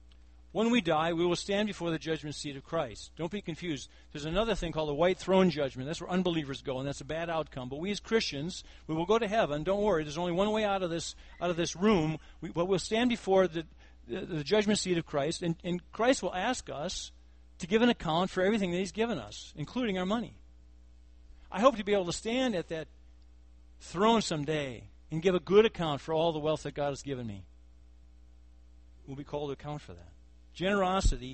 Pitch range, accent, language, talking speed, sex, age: 105-170 Hz, American, English, 220 wpm, male, 50-69